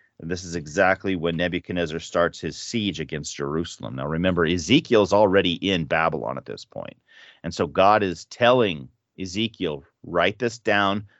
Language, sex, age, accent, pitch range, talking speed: English, male, 30-49, American, 85-105 Hz, 155 wpm